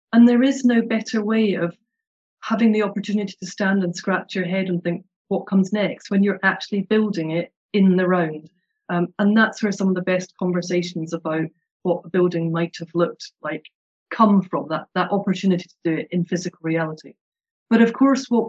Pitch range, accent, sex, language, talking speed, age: 175-210 Hz, British, female, English, 200 wpm, 40-59